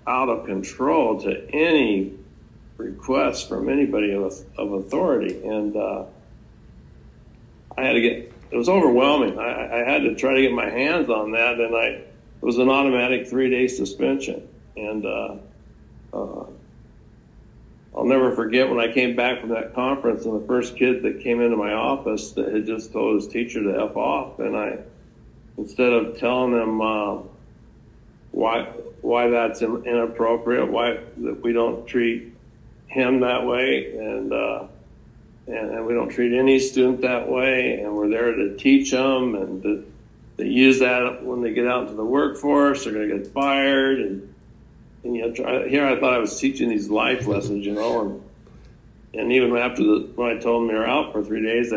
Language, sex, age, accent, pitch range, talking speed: English, male, 60-79, American, 110-130 Hz, 175 wpm